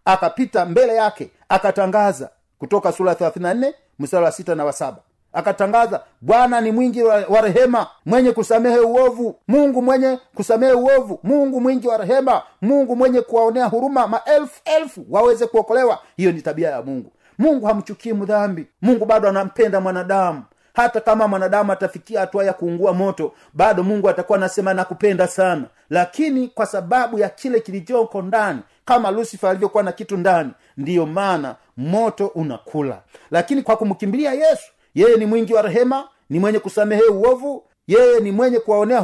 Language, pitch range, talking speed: Swahili, 190-250 Hz, 150 wpm